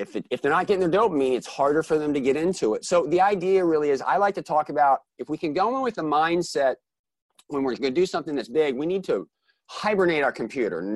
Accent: American